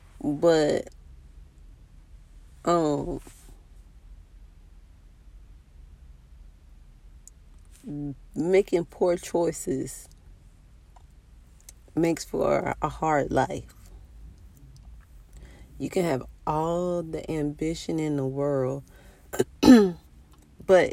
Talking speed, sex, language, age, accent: 55 wpm, female, English, 30-49, American